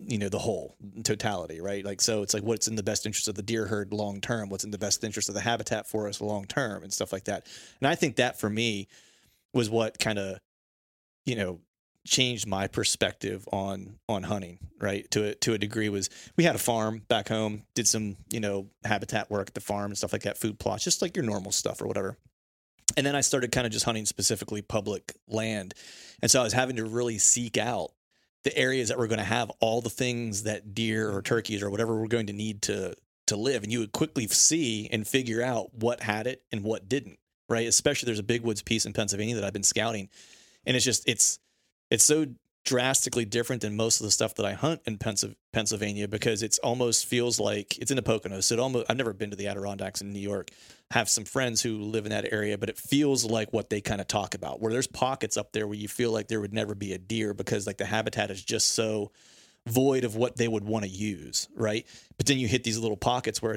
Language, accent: English, American